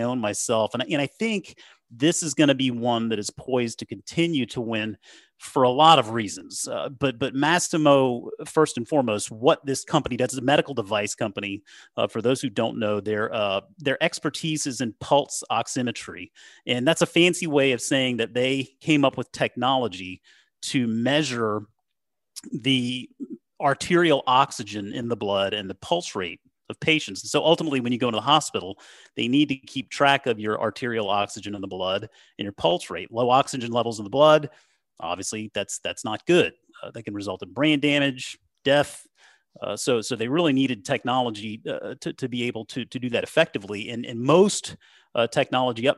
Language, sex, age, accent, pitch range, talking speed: English, male, 40-59, American, 110-145 Hz, 190 wpm